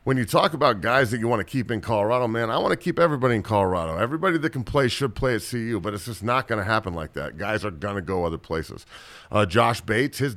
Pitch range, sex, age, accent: 105-130 Hz, male, 40-59, American